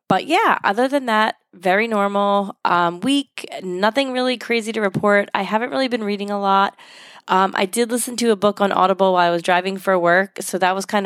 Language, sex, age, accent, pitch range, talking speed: English, female, 20-39, American, 175-210 Hz, 215 wpm